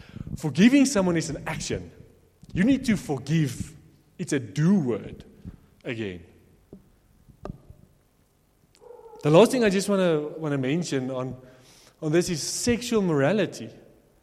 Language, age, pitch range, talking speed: English, 30-49, 135-200 Hz, 125 wpm